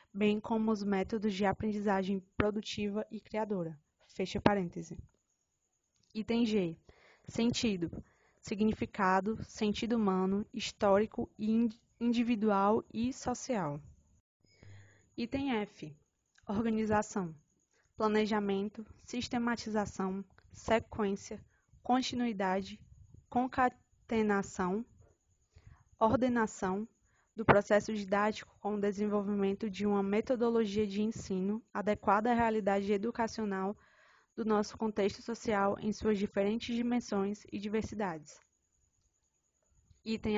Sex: female